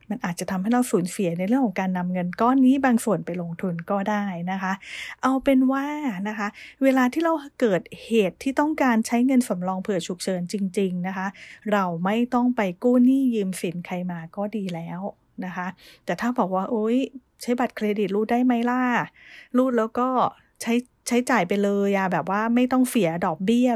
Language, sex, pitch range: English, female, 190-245 Hz